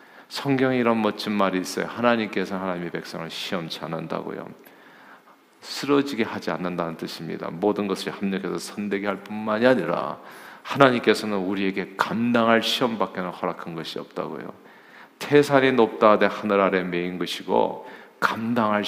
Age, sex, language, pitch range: 40-59, male, Korean, 100-130 Hz